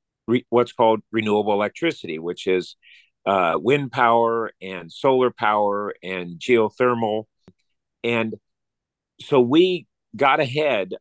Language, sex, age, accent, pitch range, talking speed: English, male, 50-69, American, 105-130 Hz, 105 wpm